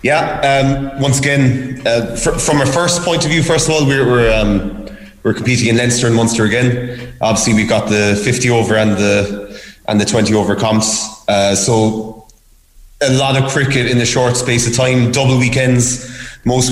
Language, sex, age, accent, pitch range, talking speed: English, male, 20-39, Irish, 110-125 Hz, 195 wpm